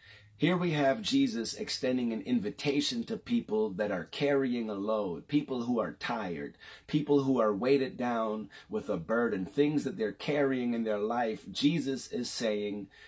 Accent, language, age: American, English, 30-49